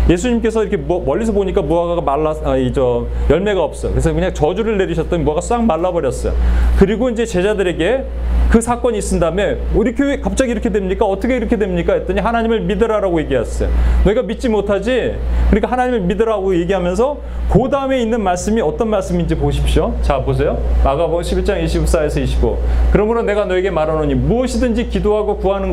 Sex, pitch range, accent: male, 135-230 Hz, native